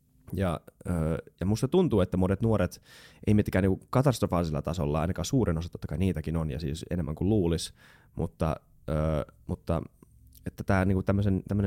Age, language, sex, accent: 20-39, Finnish, male, native